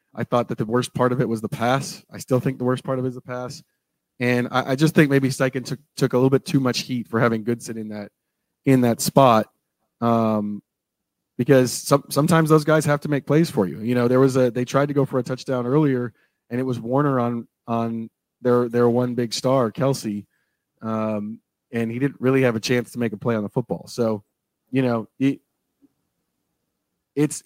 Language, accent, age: English, American, 30-49